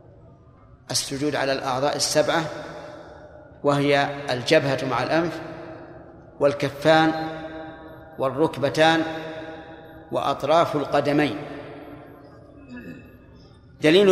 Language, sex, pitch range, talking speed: Arabic, male, 140-160 Hz, 55 wpm